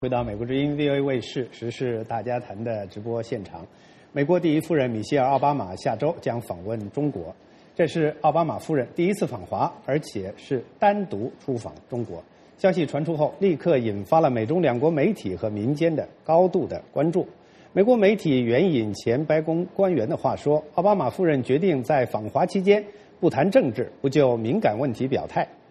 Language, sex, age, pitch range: English, male, 50-69, 120-180 Hz